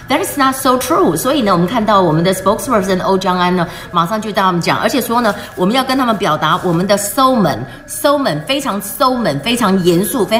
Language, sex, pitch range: Chinese, female, 175-235 Hz